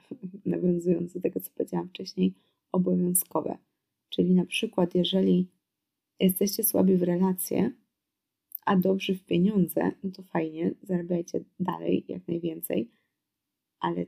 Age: 20-39